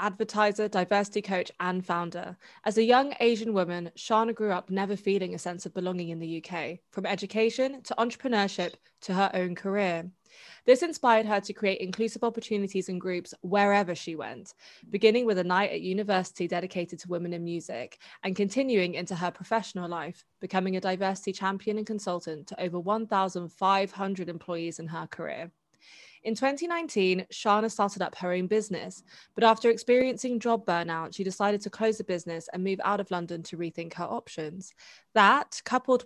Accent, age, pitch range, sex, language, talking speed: British, 20-39, 180-220 Hz, female, English, 170 wpm